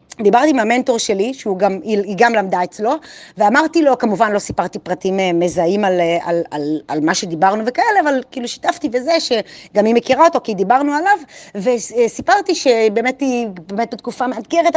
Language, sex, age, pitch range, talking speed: Hebrew, female, 30-49, 220-295 Hz, 165 wpm